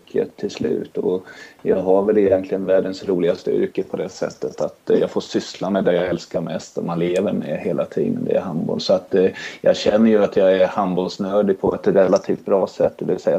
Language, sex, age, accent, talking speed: Swedish, male, 30-49, native, 215 wpm